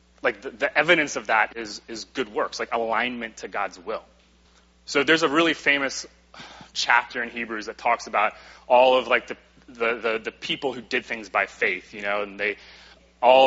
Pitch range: 115-160 Hz